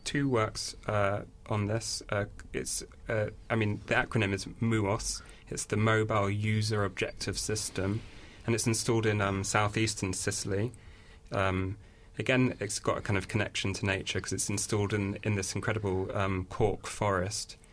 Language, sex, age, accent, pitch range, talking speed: English, male, 30-49, British, 95-110 Hz, 160 wpm